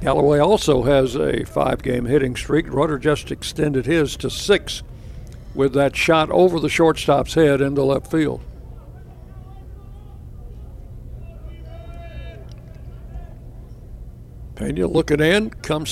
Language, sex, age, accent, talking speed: English, male, 60-79, American, 105 wpm